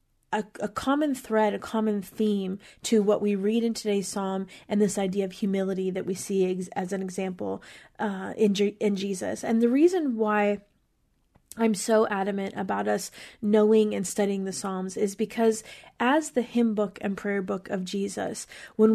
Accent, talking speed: American, 180 wpm